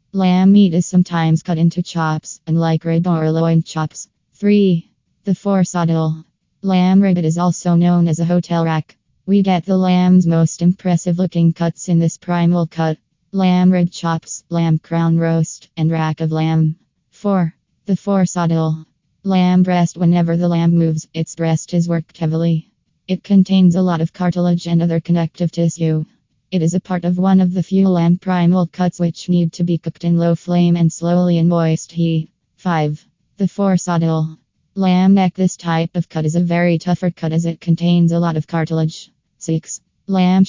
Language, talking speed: English, 175 wpm